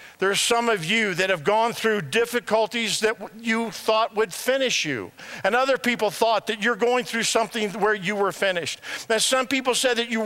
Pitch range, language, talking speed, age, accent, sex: 210-275 Hz, English, 200 wpm, 50-69, American, male